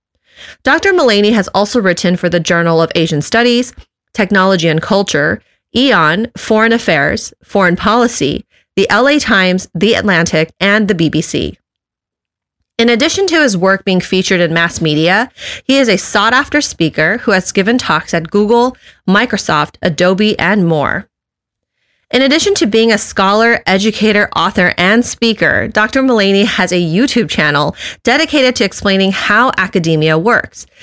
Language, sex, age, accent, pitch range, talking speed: English, female, 30-49, American, 180-240 Hz, 145 wpm